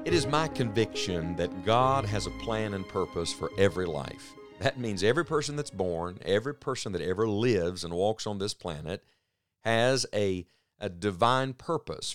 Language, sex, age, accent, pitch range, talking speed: English, male, 50-69, American, 95-130 Hz, 175 wpm